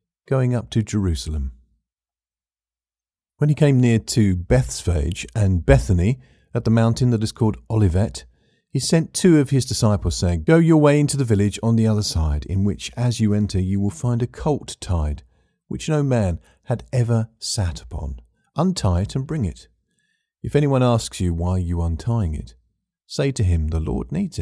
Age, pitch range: 40-59, 90-120 Hz